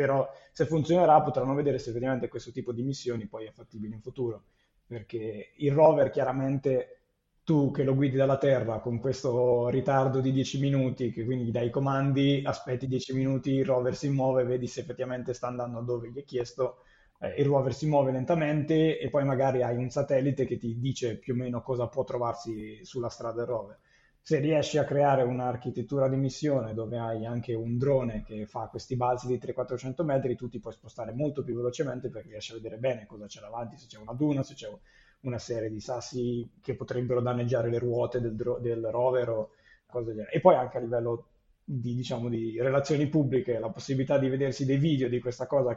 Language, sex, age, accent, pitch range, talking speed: Italian, male, 20-39, native, 120-135 Hz, 200 wpm